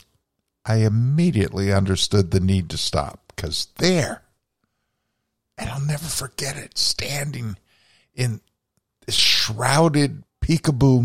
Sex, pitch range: male, 100-120 Hz